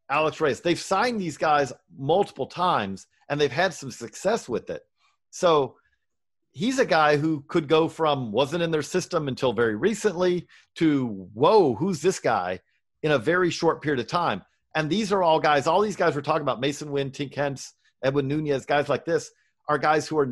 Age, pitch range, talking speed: 40-59, 135-175 Hz, 195 wpm